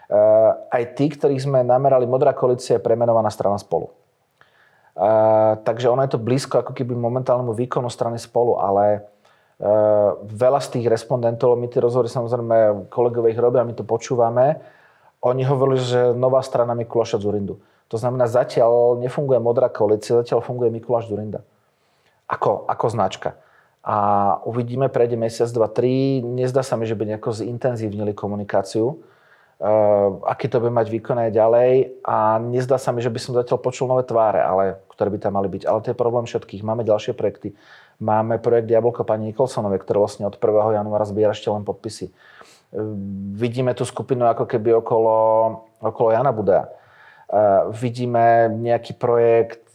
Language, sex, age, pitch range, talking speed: Slovak, male, 30-49, 110-125 Hz, 160 wpm